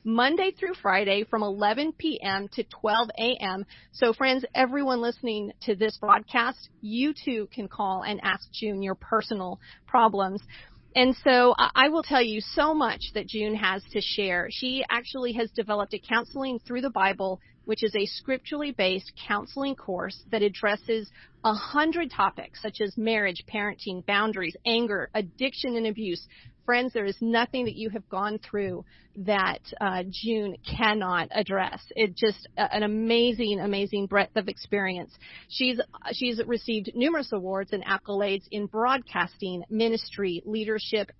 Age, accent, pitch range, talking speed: 40-59, American, 200-245 Hz, 150 wpm